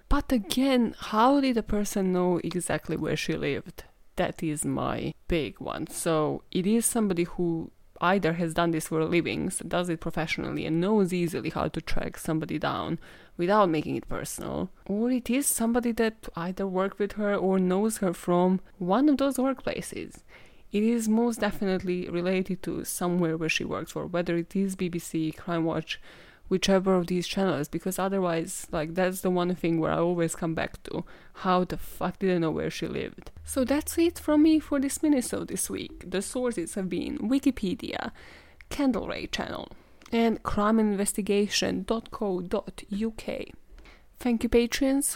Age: 20-39